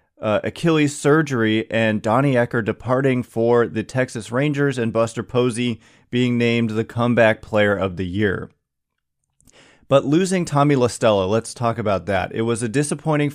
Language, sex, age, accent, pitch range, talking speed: English, male, 30-49, American, 110-130 Hz, 155 wpm